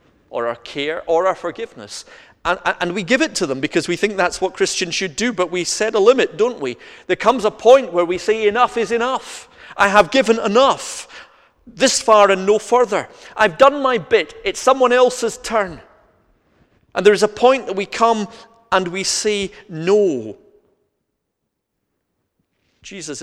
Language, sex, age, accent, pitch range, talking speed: English, male, 40-59, British, 140-220 Hz, 175 wpm